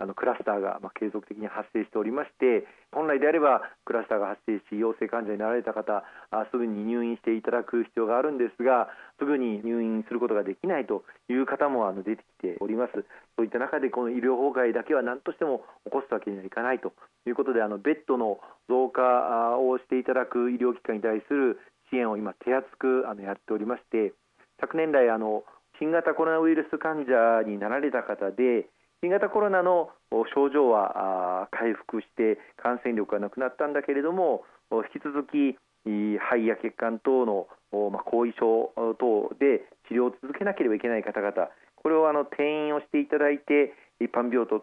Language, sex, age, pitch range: Japanese, male, 40-59, 110-145 Hz